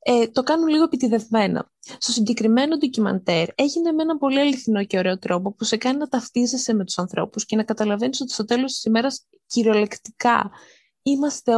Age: 20-39